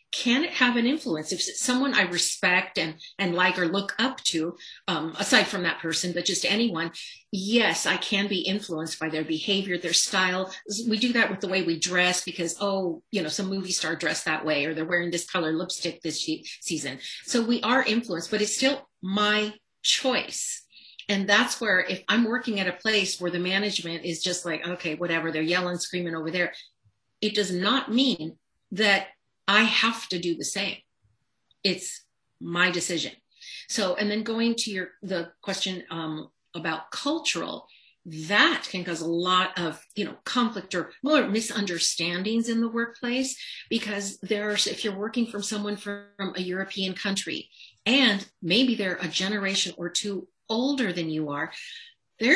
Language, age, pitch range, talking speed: English, 50-69, 170-220 Hz, 180 wpm